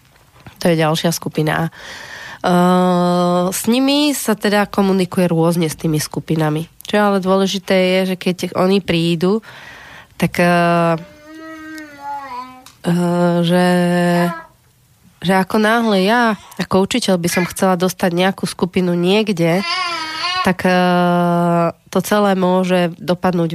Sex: female